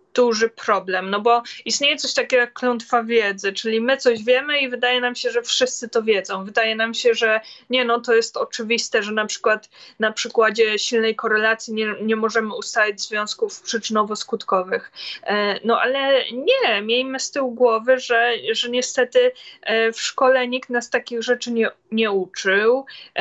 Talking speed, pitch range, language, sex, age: 165 wpm, 215-250 Hz, Polish, female, 20-39